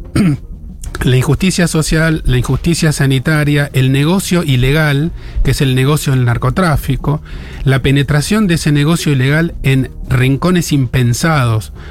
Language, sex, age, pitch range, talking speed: Spanish, male, 40-59, 130-160 Hz, 120 wpm